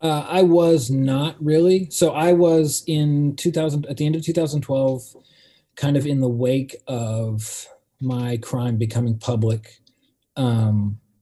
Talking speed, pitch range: 140 wpm, 115-140 Hz